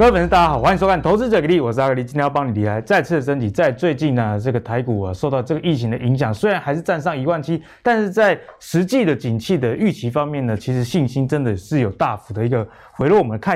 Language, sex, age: Chinese, male, 20-39